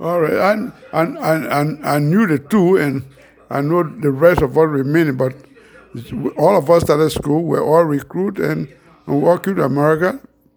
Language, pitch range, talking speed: English, 140-170 Hz, 185 wpm